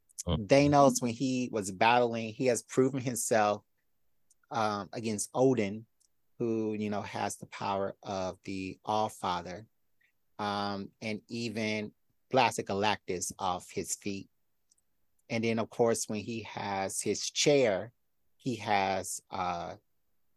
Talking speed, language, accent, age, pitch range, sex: 125 wpm, English, American, 30-49, 100-130 Hz, male